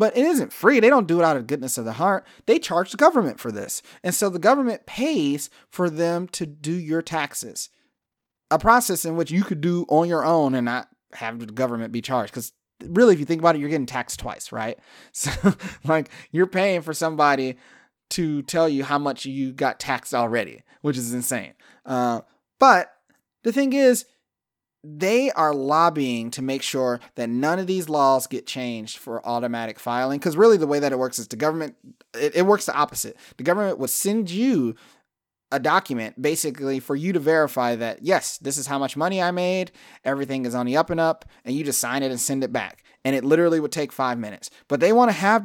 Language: English